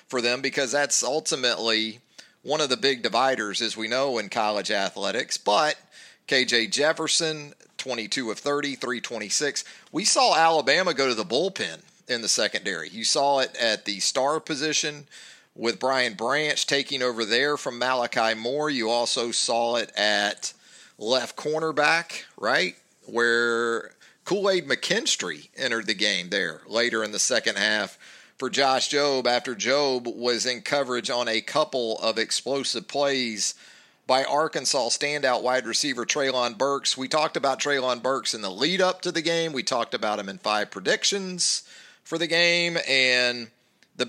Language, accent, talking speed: English, American, 155 wpm